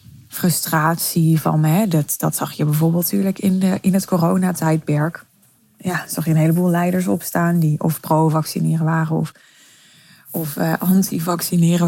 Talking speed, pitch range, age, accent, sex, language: 140 wpm, 160-185 Hz, 20-39, Dutch, female, Dutch